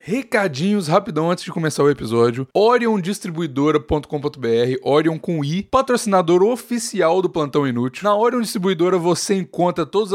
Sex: male